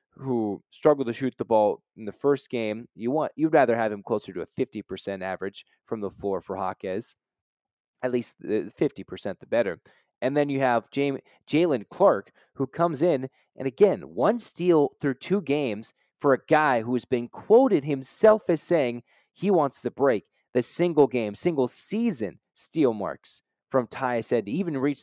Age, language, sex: 30-49, English, male